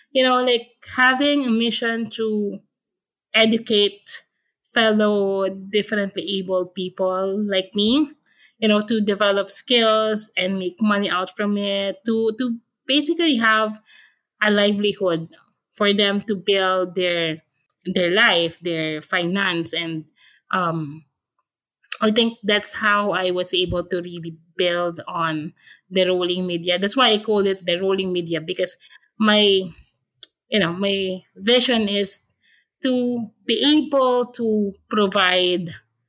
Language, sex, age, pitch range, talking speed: English, female, 20-39, 180-225 Hz, 125 wpm